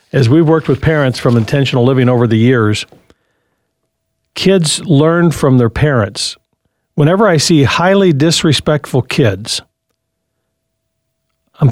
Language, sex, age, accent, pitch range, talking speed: English, male, 50-69, American, 120-170 Hz, 120 wpm